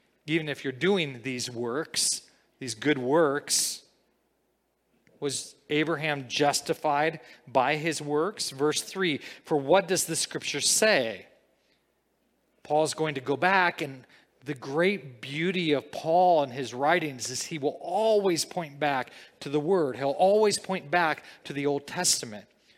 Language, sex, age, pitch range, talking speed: English, male, 40-59, 140-180 Hz, 140 wpm